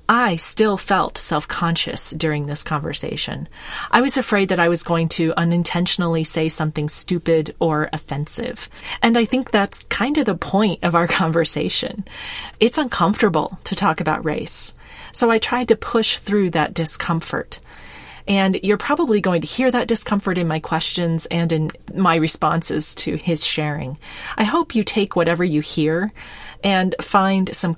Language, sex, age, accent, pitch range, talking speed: English, female, 30-49, American, 155-200 Hz, 160 wpm